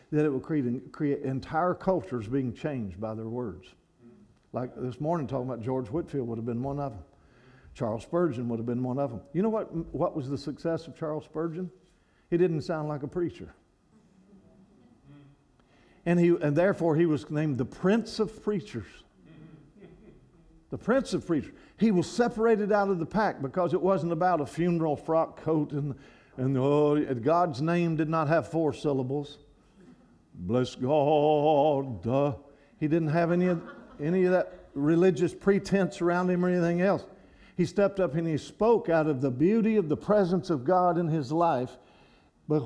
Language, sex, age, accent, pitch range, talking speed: English, male, 50-69, American, 135-175 Hz, 175 wpm